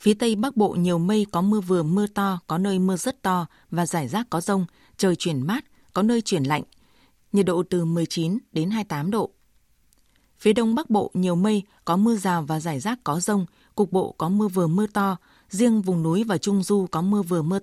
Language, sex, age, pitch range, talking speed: Vietnamese, female, 20-39, 175-210 Hz, 225 wpm